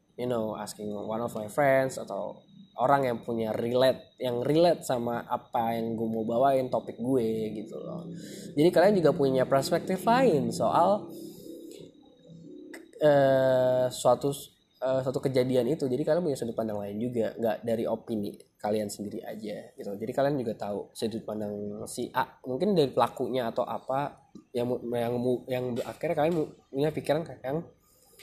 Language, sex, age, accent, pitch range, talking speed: Indonesian, male, 10-29, native, 110-160 Hz, 155 wpm